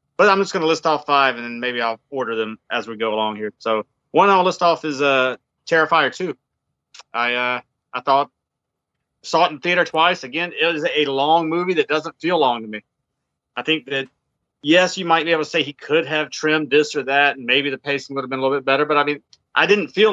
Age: 30-49